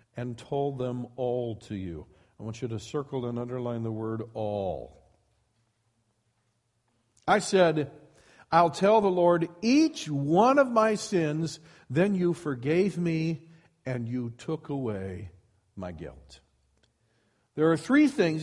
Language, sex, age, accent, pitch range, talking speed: English, male, 50-69, American, 120-170 Hz, 135 wpm